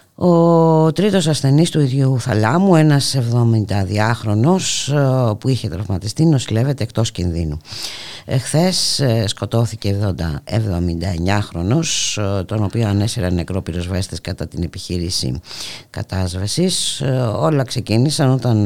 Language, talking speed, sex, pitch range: Greek, 100 wpm, female, 95-130 Hz